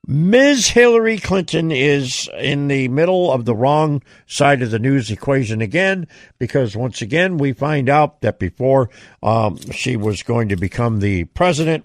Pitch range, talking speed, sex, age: 115-160 Hz, 160 wpm, male, 60-79